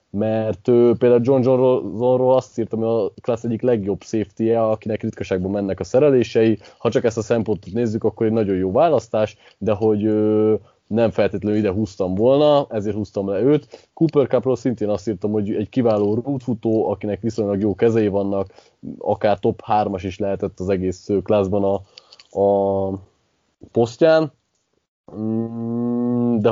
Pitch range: 95-115 Hz